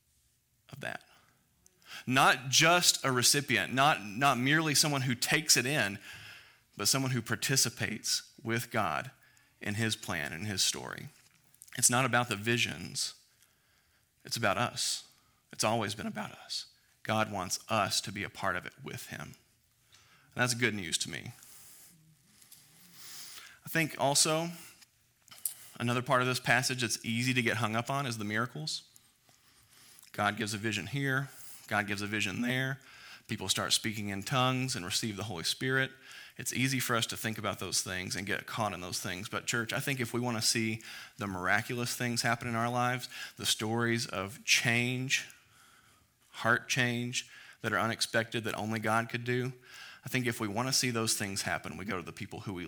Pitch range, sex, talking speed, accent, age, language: 110-130 Hz, male, 180 wpm, American, 30-49, English